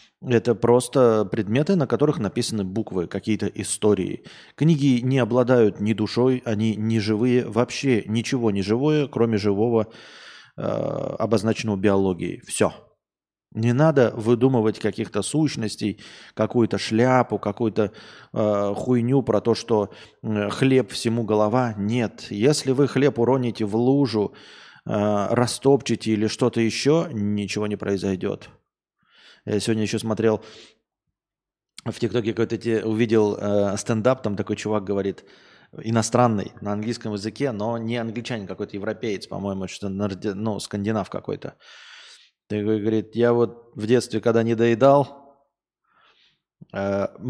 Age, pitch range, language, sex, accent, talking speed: 20-39, 105-120 Hz, Russian, male, native, 120 wpm